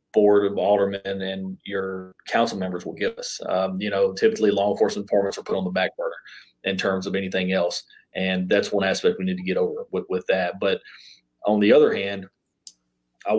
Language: English